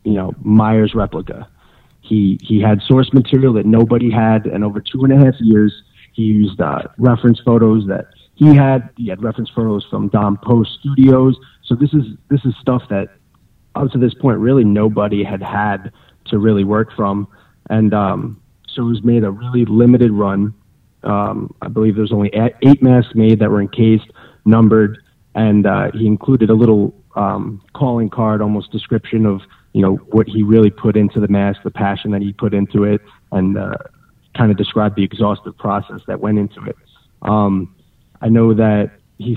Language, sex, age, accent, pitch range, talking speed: English, male, 30-49, American, 105-120 Hz, 185 wpm